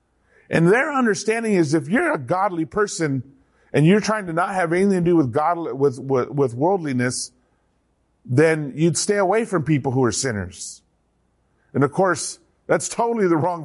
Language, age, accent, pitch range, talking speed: English, 50-69, American, 130-180 Hz, 175 wpm